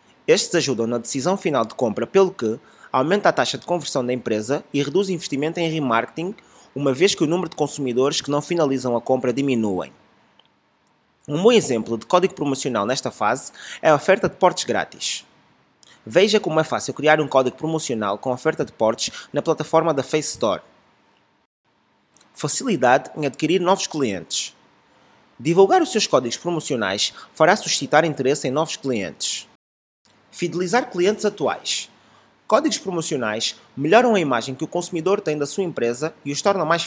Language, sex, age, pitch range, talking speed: Portuguese, male, 20-39, 130-180 Hz, 165 wpm